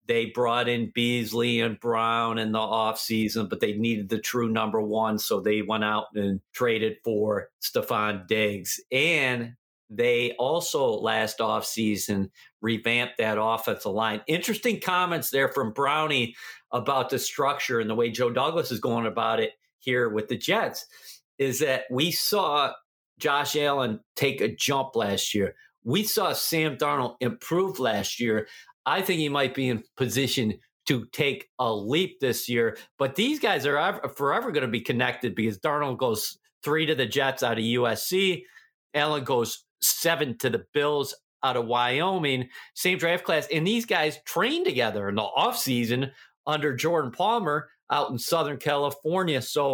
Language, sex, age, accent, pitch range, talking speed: English, male, 50-69, American, 115-150 Hz, 160 wpm